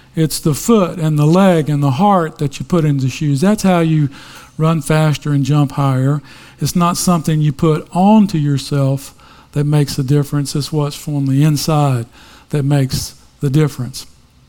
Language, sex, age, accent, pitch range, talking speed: English, male, 50-69, American, 140-170 Hz, 175 wpm